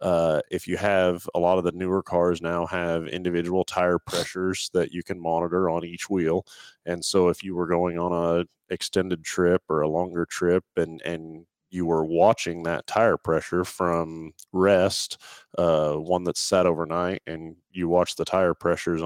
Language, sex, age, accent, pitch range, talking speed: English, male, 30-49, American, 80-90 Hz, 180 wpm